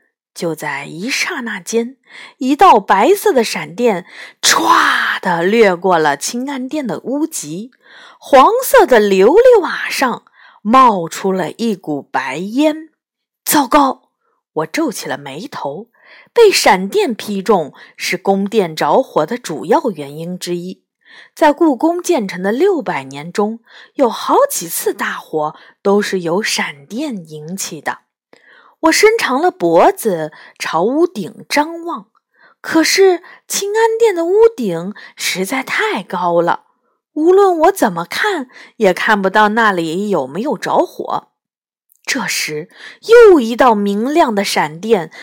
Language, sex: Chinese, female